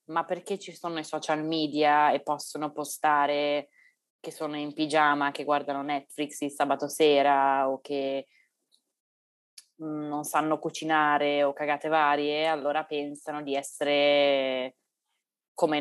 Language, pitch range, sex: Italian, 145-155 Hz, female